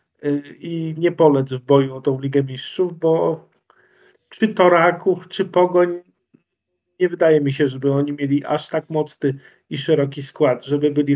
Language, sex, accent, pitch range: Polish, male, native, 145-180 Hz